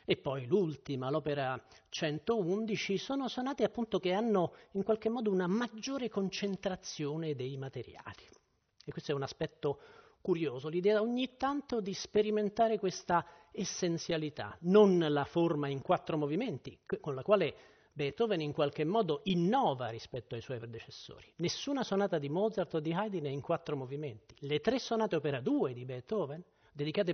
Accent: native